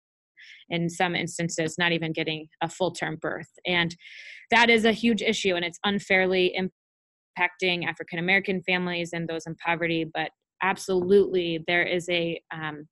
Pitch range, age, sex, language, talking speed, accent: 170-195 Hz, 20-39, female, English, 145 wpm, American